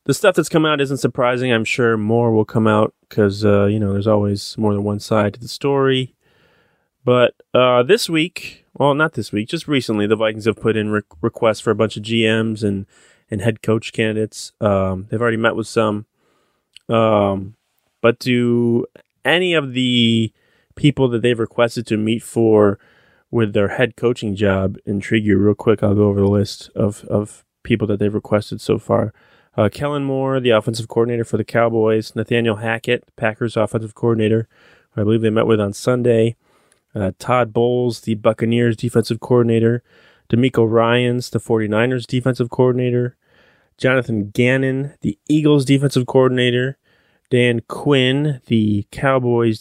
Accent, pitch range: American, 110-125 Hz